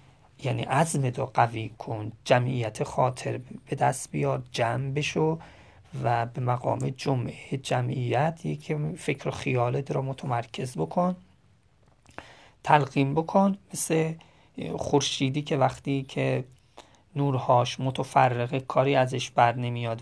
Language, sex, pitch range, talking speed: Persian, male, 125-140 Hz, 110 wpm